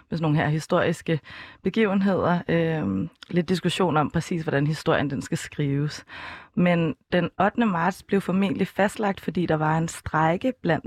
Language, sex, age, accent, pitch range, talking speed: Danish, female, 20-39, native, 160-185 Hz, 160 wpm